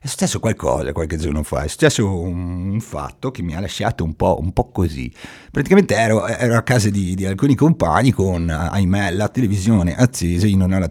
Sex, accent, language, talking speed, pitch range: male, native, Italian, 205 wpm, 90-120 Hz